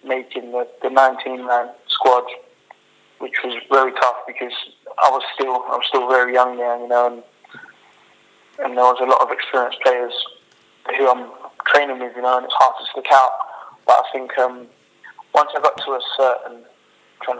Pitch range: 125-130 Hz